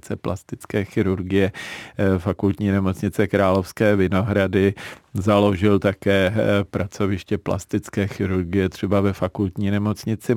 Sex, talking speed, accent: male, 85 wpm, native